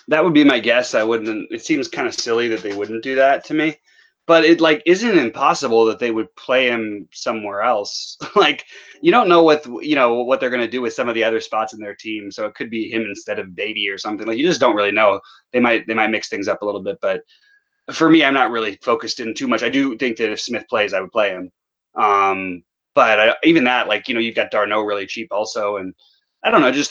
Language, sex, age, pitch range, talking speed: English, male, 30-49, 105-160 Hz, 265 wpm